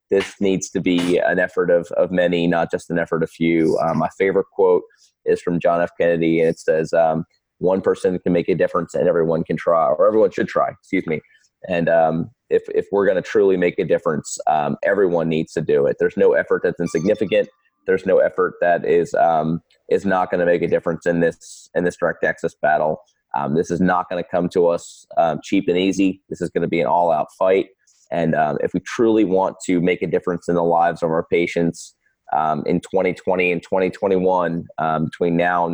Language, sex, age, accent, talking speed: English, male, 30-49, American, 220 wpm